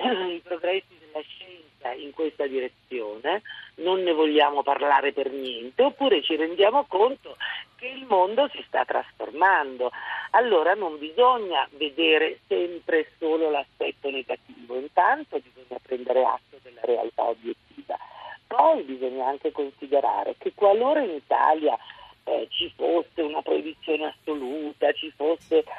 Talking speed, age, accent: 125 wpm, 50-69, native